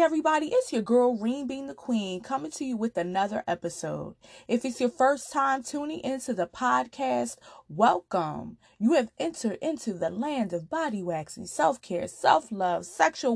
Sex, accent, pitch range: female, American, 185-255 Hz